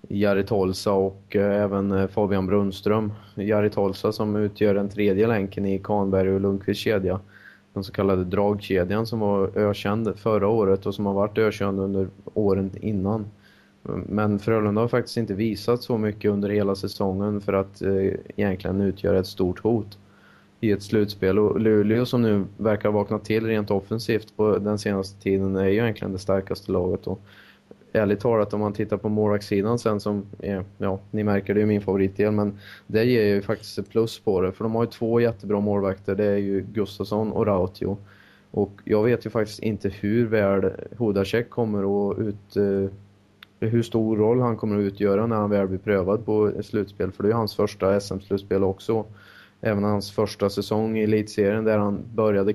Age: 20-39